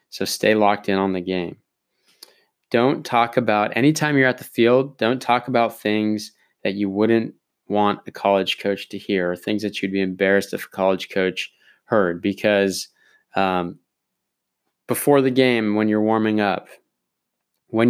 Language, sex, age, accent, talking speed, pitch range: English, male, 20-39, American, 165 wpm, 95-110 Hz